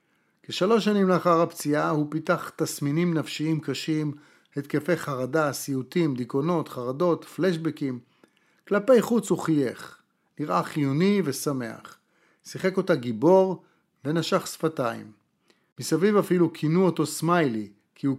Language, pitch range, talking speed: Hebrew, 135-170 Hz, 110 wpm